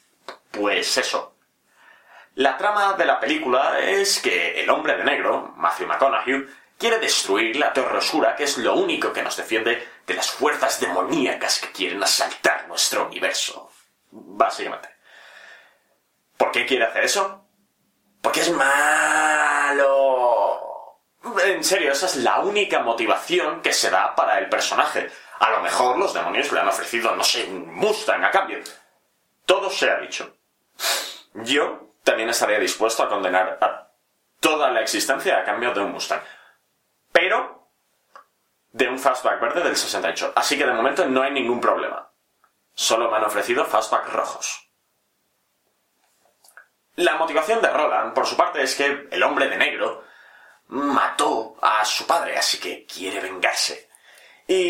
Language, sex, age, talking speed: Spanish, male, 30-49, 145 wpm